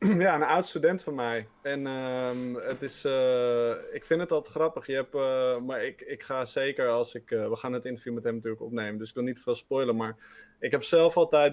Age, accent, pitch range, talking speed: 20-39, Dutch, 125-185 Hz, 240 wpm